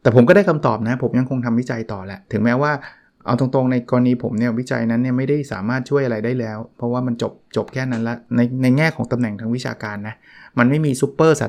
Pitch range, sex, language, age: 115-135 Hz, male, Thai, 20-39